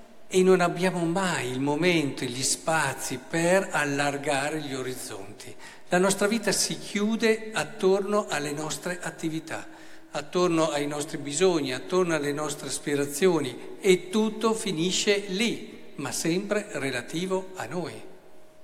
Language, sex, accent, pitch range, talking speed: Italian, male, native, 135-180 Hz, 125 wpm